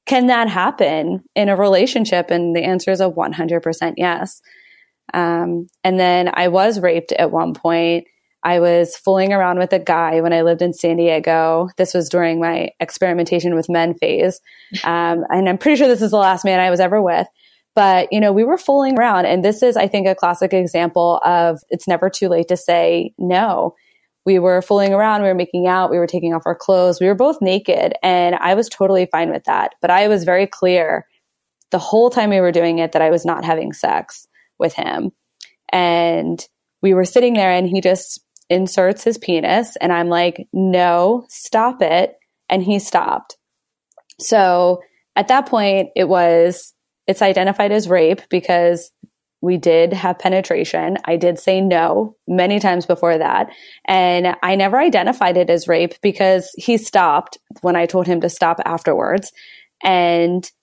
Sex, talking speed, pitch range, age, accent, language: female, 185 wpm, 170-195 Hz, 20-39, American, English